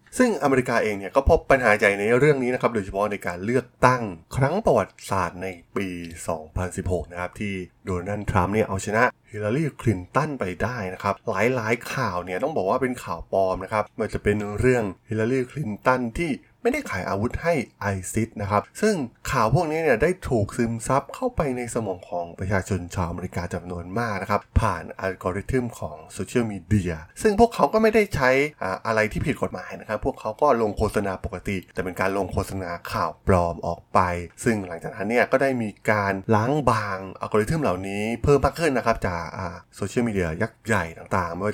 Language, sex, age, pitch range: Thai, male, 20-39, 95-120 Hz